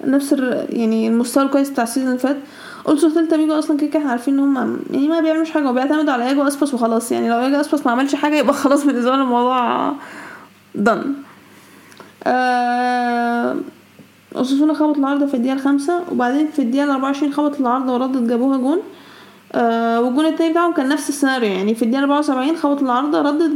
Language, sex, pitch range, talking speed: Arabic, female, 260-310 Hz, 180 wpm